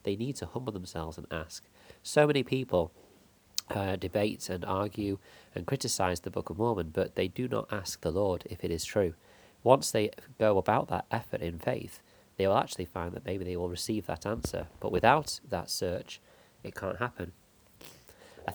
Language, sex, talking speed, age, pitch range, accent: English, male, 190 wpm, 30-49, 90-110 Hz, British